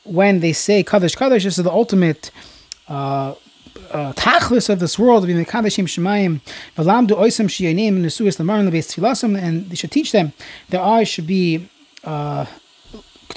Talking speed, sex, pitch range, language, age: 110 wpm, male, 175-225 Hz, English, 20-39